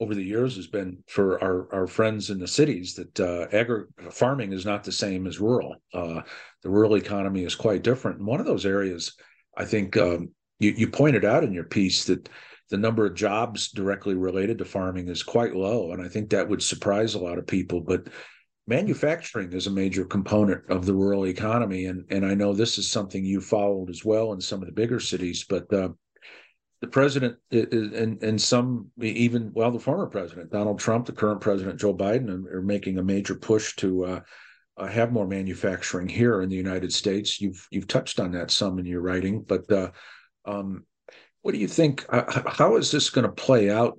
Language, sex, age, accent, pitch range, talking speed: English, male, 50-69, American, 95-110 Hz, 210 wpm